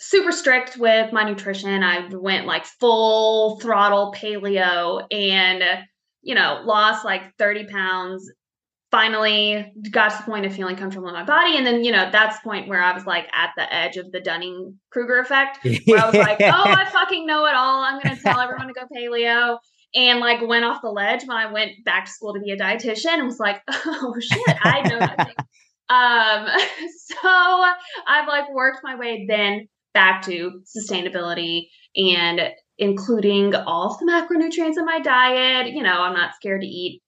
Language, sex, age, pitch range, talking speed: English, female, 20-39, 195-250 Hz, 190 wpm